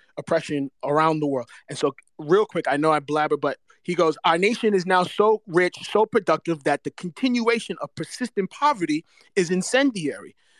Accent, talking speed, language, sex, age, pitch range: American, 175 wpm, English, male, 30-49, 160-220 Hz